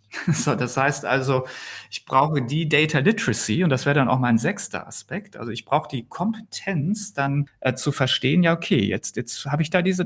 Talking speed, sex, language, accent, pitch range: 205 wpm, male, German, German, 125-165 Hz